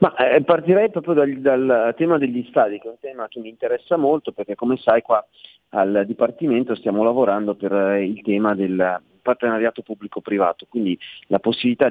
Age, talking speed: 40-59, 170 wpm